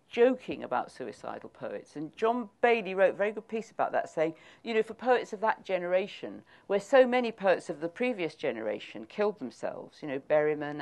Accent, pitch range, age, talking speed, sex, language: British, 140-200 Hz, 50-69, 195 wpm, female, English